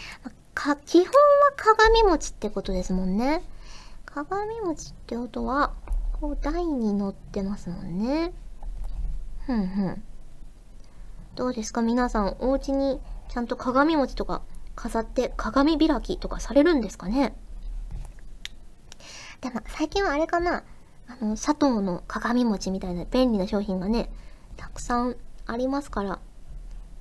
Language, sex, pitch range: Japanese, male, 205-280 Hz